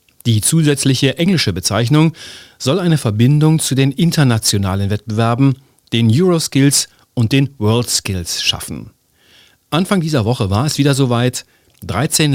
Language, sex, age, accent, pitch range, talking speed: German, male, 40-59, German, 110-145 Hz, 120 wpm